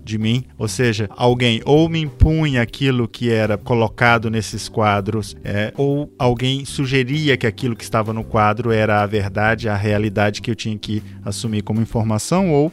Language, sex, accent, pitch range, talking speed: Portuguese, male, Brazilian, 110-135 Hz, 175 wpm